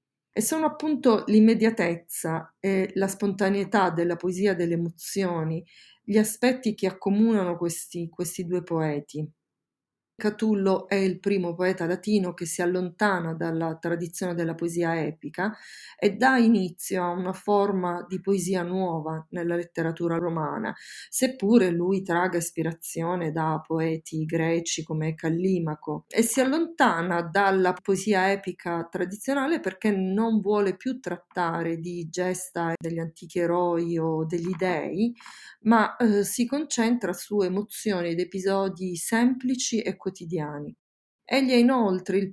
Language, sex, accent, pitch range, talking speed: Italian, female, native, 170-205 Hz, 125 wpm